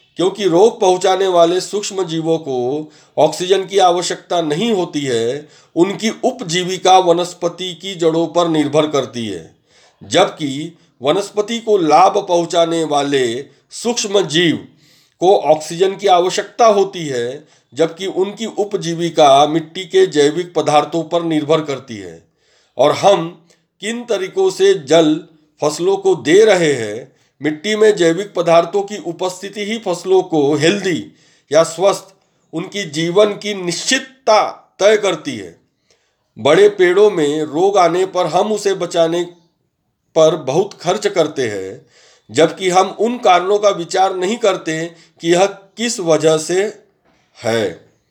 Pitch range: 160-200 Hz